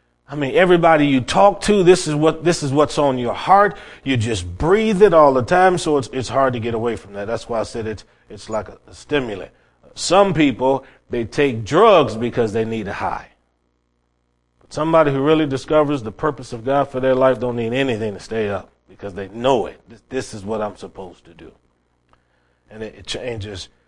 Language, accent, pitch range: English, American, 110-150 Hz